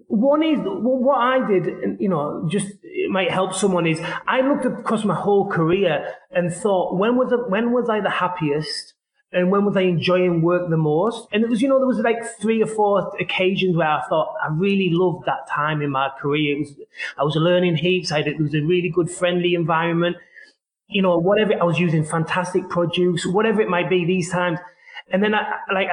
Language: English